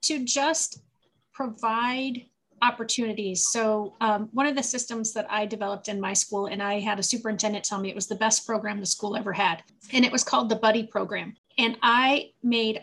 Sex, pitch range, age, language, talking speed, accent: female, 200-240 Hz, 30-49, English, 195 wpm, American